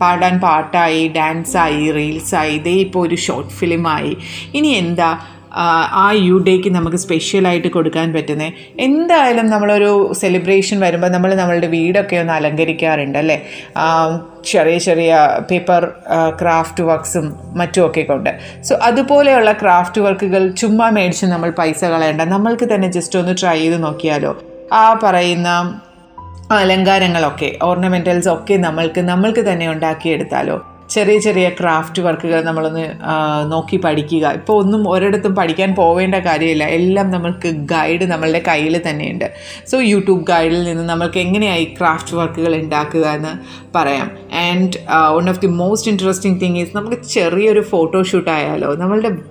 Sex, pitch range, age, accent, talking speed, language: female, 160-190 Hz, 30-49, native, 125 wpm, Malayalam